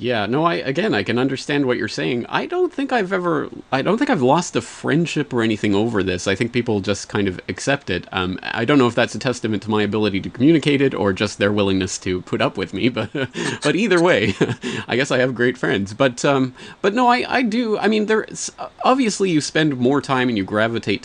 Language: English